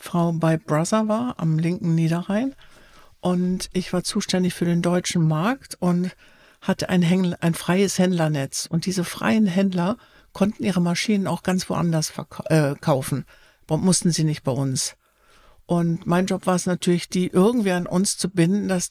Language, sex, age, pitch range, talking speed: German, female, 60-79, 165-195 Hz, 170 wpm